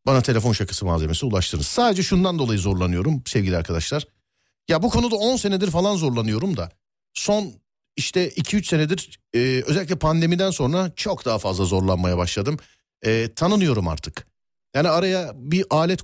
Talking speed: 145 wpm